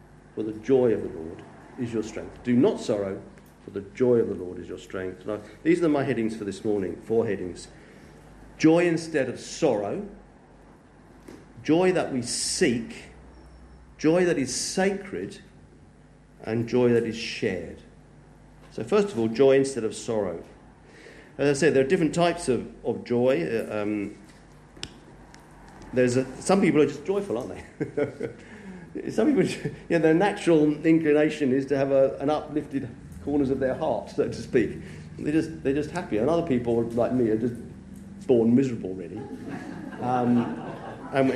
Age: 50-69